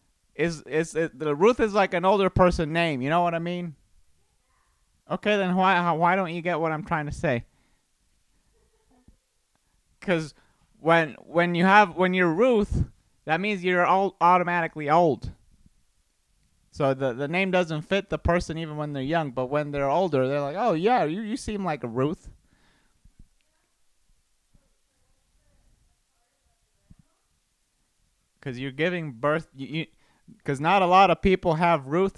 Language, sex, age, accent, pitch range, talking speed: English, male, 30-49, American, 115-175 Hz, 155 wpm